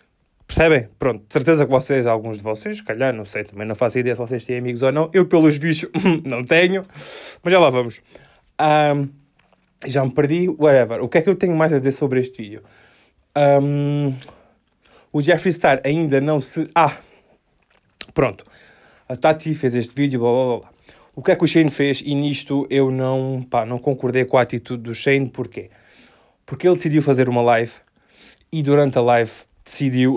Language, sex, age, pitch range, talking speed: Portuguese, male, 20-39, 125-150 Hz, 190 wpm